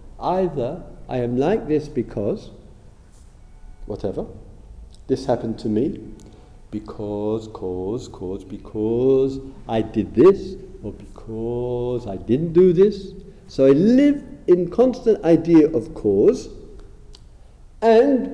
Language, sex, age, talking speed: English, male, 50-69, 110 wpm